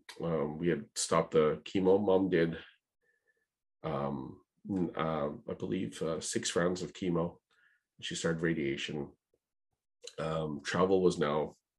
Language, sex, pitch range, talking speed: English, male, 85-110 Hz, 125 wpm